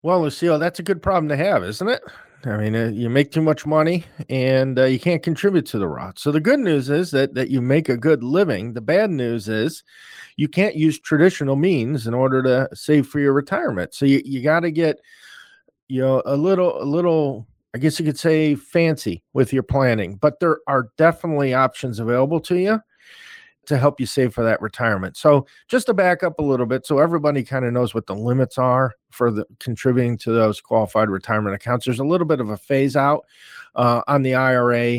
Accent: American